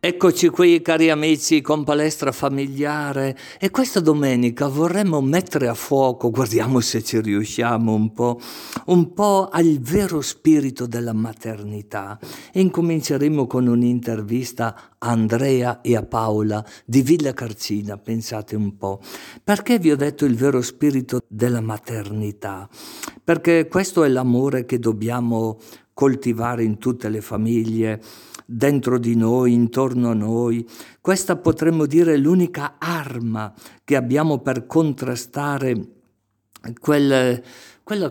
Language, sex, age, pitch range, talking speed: Italian, male, 50-69, 115-155 Hz, 125 wpm